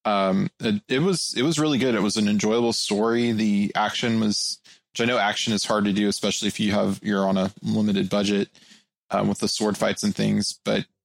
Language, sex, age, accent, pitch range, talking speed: English, male, 20-39, American, 100-125 Hz, 215 wpm